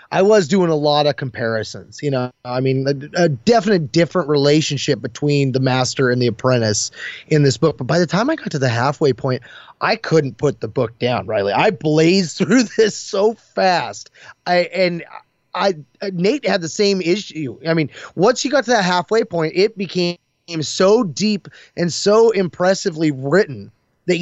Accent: American